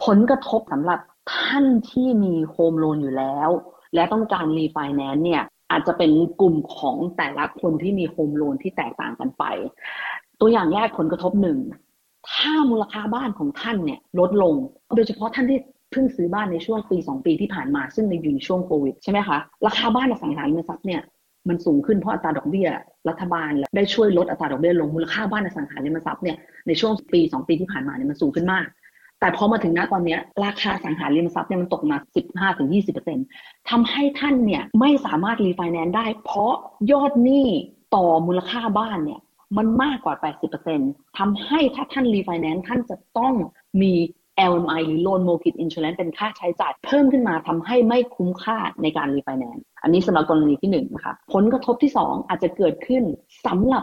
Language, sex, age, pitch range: Thai, female, 30-49, 170-255 Hz